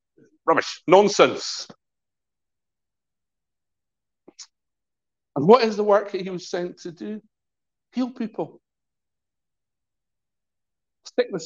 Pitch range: 185-290 Hz